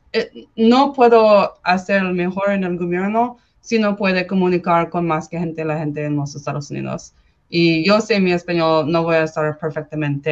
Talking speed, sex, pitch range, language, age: 180 wpm, female, 165-210 Hz, Spanish, 20-39